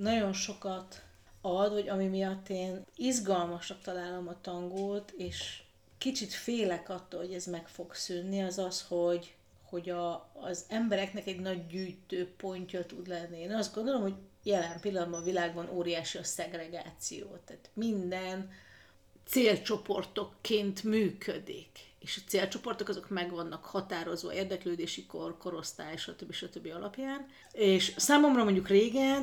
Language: Hungarian